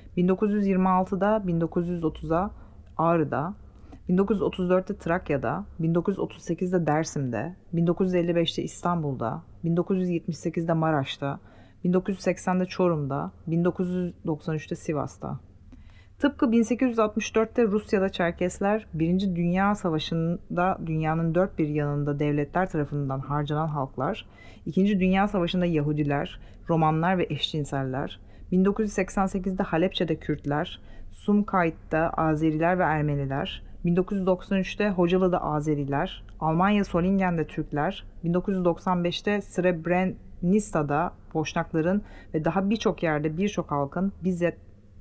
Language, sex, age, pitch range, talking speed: Turkish, female, 30-49, 150-185 Hz, 80 wpm